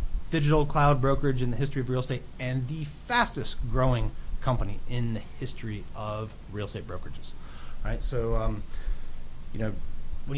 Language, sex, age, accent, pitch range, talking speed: English, male, 30-49, American, 115-150 Hz, 155 wpm